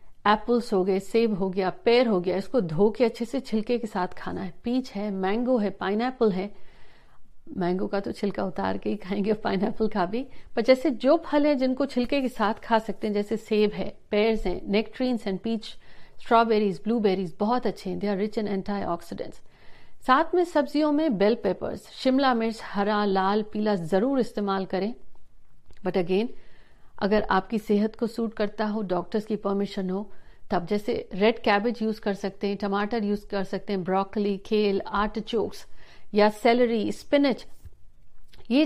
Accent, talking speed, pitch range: native, 175 wpm, 195-240 Hz